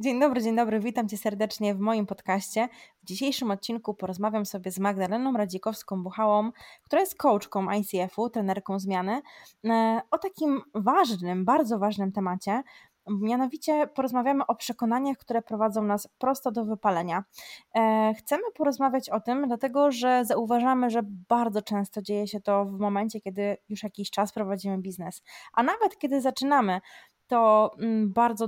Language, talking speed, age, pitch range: Polish, 140 wpm, 20-39, 200-235 Hz